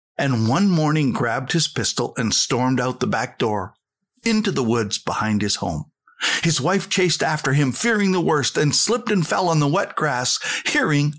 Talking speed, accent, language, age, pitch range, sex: 190 wpm, American, English, 60-79, 130-195 Hz, male